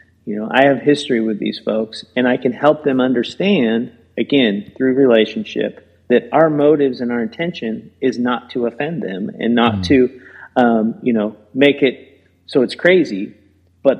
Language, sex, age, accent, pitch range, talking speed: English, male, 40-59, American, 120-155 Hz, 170 wpm